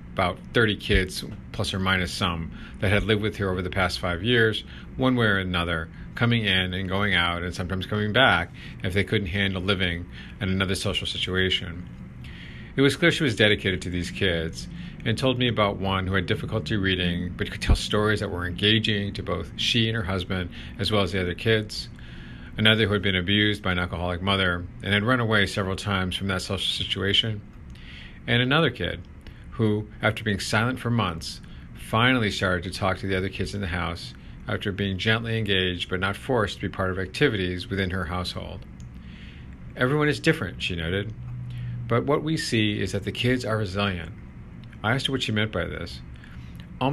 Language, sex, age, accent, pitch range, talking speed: English, male, 40-59, American, 90-110 Hz, 195 wpm